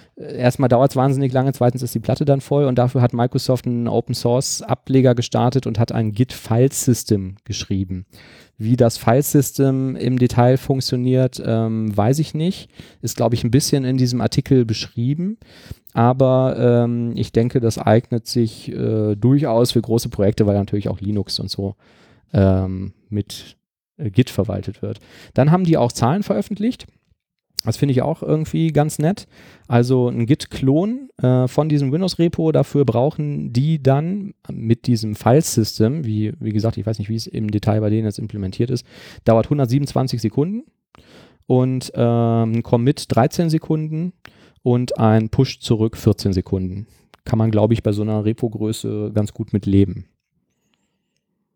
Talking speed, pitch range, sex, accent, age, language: 155 wpm, 110-135 Hz, male, German, 40-59, German